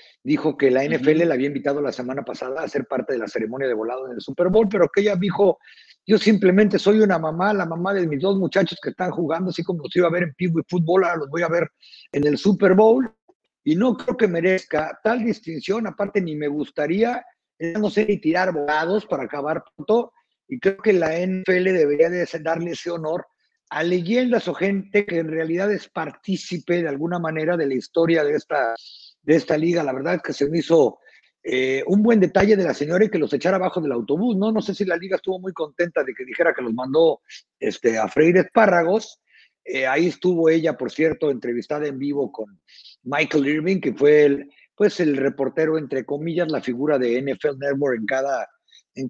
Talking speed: 210 wpm